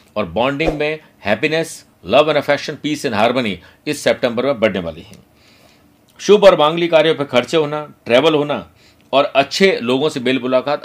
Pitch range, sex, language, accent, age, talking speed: 125-150 Hz, male, Hindi, native, 50-69, 125 wpm